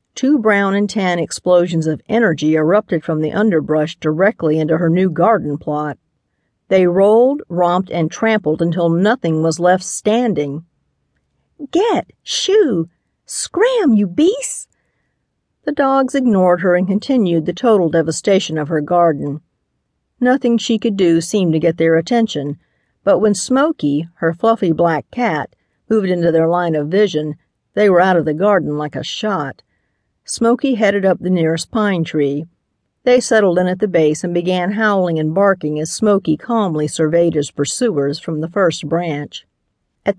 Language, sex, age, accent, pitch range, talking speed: English, female, 50-69, American, 160-215 Hz, 155 wpm